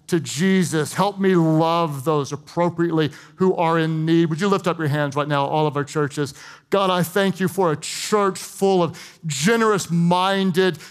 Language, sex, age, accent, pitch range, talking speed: English, male, 40-59, American, 160-200 Hz, 180 wpm